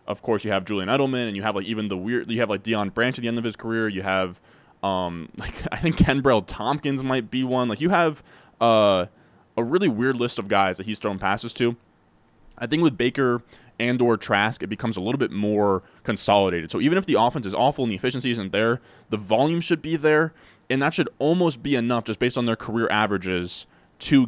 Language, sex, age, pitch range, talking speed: English, male, 20-39, 100-125 Hz, 230 wpm